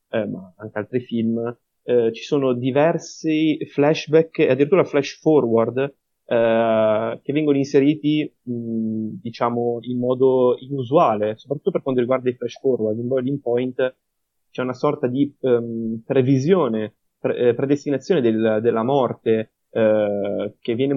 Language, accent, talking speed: Italian, native, 125 wpm